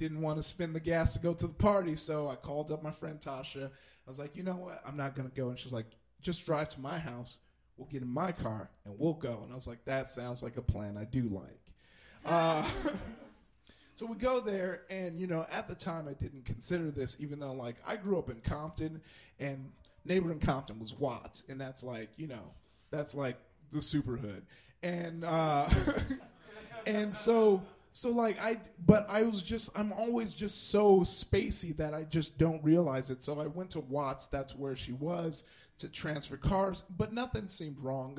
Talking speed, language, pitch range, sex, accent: 210 wpm, English, 130-175 Hz, male, American